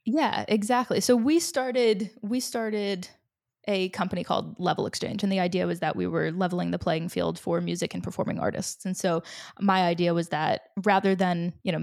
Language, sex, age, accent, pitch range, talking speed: English, female, 10-29, American, 180-225 Hz, 195 wpm